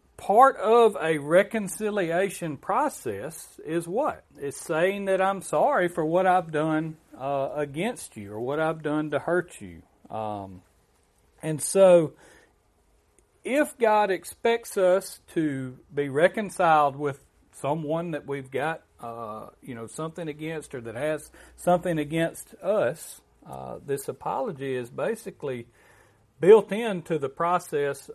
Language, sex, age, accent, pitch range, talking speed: English, male, 40-59, American, 130-185 Hz, 130 wpm